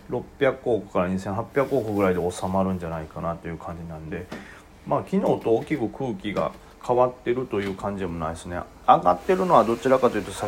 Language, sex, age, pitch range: Japanese, male, 40-59, 90-120 Hz